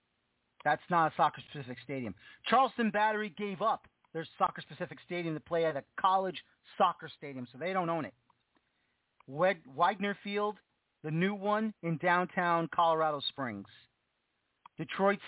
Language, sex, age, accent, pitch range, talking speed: English, male, 40-59, American, 155-195 Hz, 140 wpm